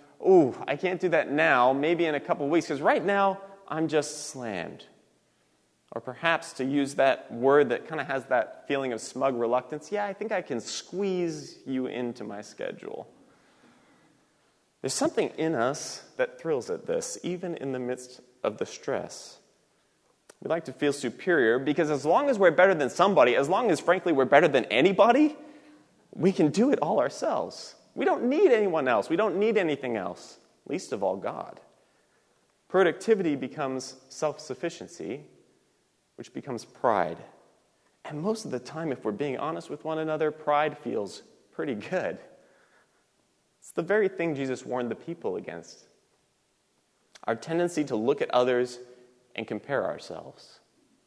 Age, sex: 30-49, male